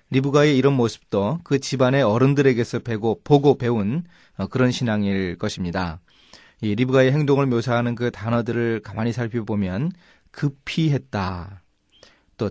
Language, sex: Korean, male